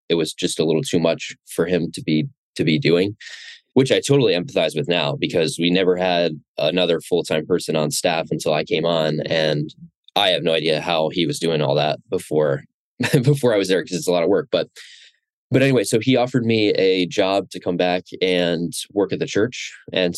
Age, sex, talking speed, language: 20-39, male, 215 wpm, English